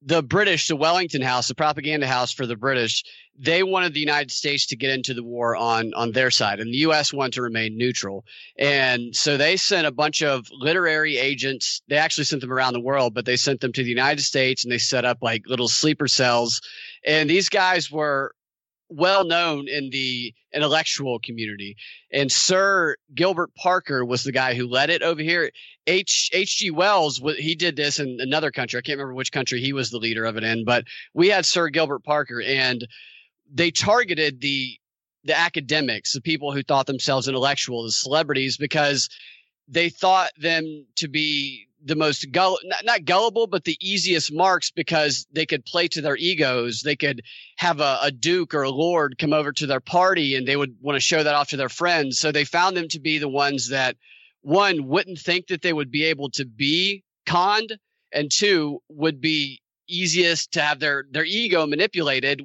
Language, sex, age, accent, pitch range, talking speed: English, male, 30-49, American, 130-165 Hz, 195 wpm